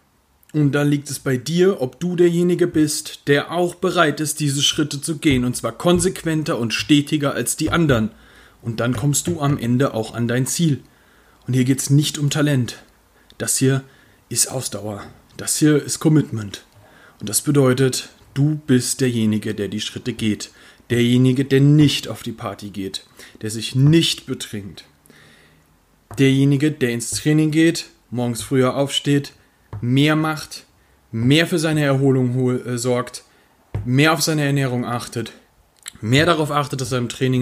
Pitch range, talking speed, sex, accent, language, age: 120-150 Hz, 160 wpm, male, German, German, 40-59